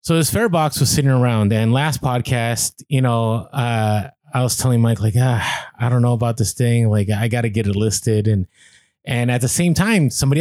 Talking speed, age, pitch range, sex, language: 225 wpm, 20-39, 120-155 Hz, male, English